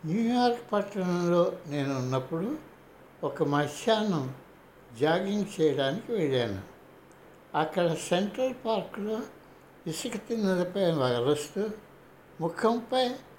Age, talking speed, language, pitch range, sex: 60-79, 70 wpm, Telugu, 145-195 Hz, male